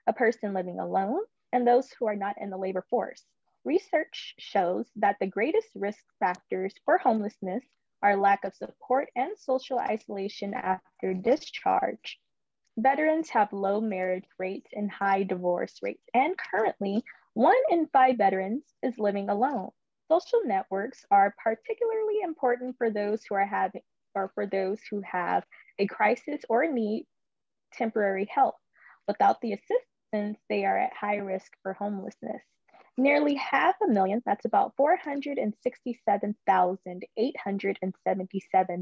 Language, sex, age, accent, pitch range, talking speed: English, female, 20-39, American, 195-260 Hz, 135 wpm